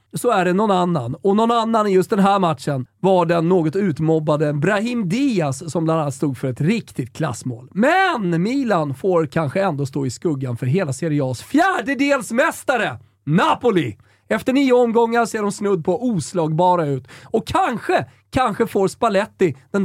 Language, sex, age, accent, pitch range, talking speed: Swedish, male, 30-49, native, 145-220 Hz, 170 wpm